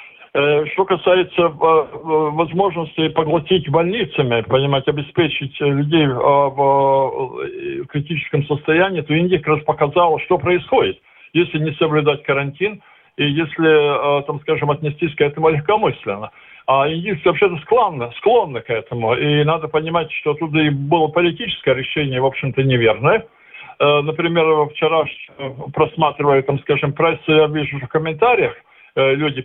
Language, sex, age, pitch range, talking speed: Russian, male, 50-69, 145-180 Hz, 120 wpm